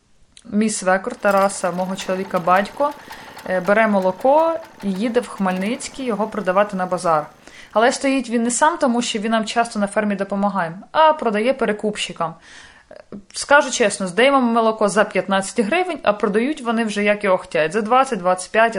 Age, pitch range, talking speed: 20-39, 195-245 Hz, 155 wpm